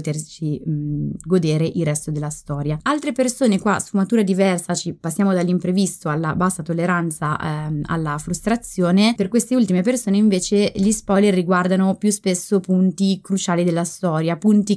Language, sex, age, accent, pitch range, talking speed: Italian, female, 20-39, native, 165-210 Hz, 140 wpm